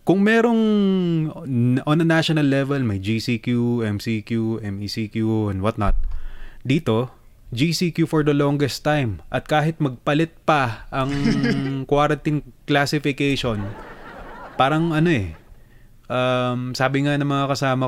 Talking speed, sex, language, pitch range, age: 115 wpm, male, Filipino, 110-135 Hz, 20-39